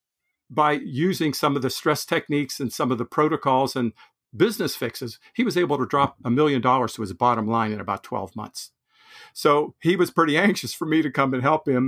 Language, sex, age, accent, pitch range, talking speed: English, male, 50-69, American, 130-165 Hz, 215 wpm